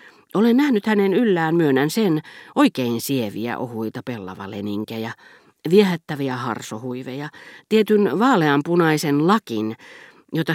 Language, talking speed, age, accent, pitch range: Finnish, 90 wpm, 40-59, native, 130-170 Hz